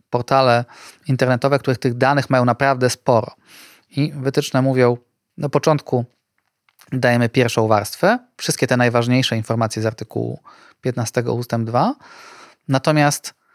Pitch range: 120-140 Hz